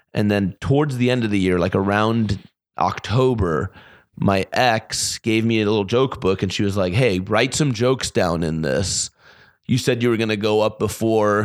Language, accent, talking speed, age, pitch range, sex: English, American, 205 wpm, 30-49, 95-120 Hz, male